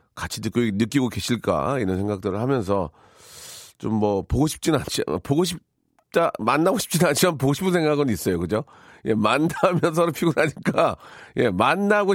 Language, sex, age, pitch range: Korean, male, 40-59, 105-145 Hz